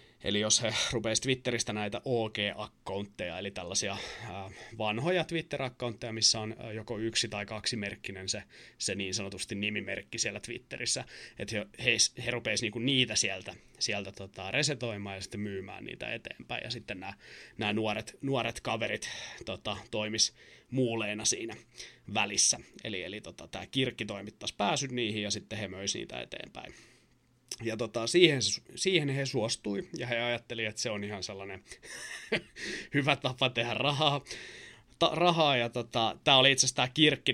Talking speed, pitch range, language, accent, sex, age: 150 wpm, 105-125 Hz, Finnish, native, male, 30-49